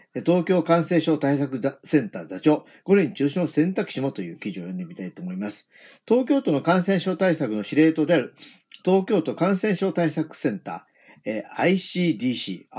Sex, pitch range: male, 145-190 Hz